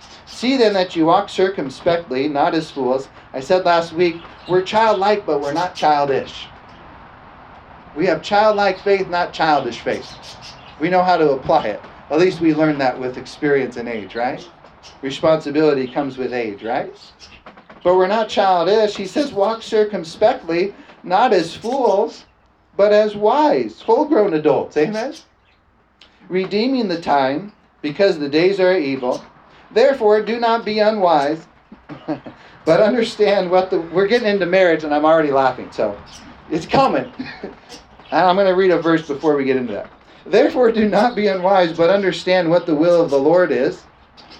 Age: 40-59